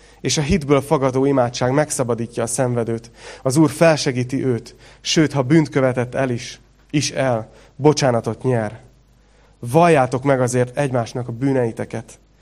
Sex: male